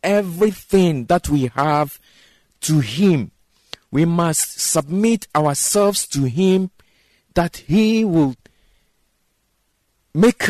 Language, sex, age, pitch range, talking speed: English, male, 50-69, 130-180 Hz, 90 wpm